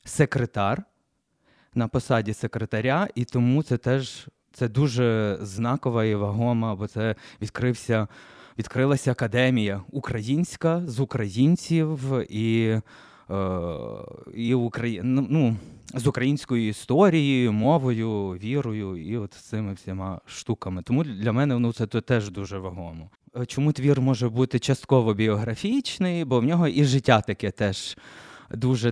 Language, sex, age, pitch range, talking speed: Ukrainian, male, 20-39, 105-135 Hz, 120 wpm